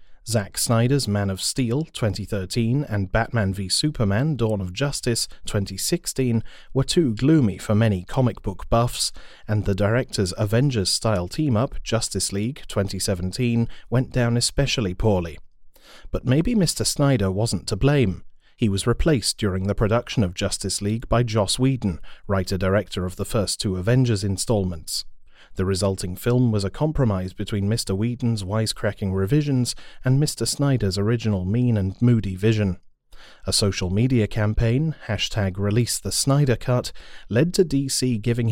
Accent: British